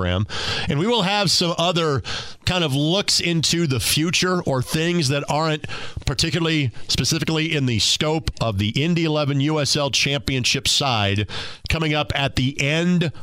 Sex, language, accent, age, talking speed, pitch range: male, English, American, 40-59, 150 wpm, 115-160 Hz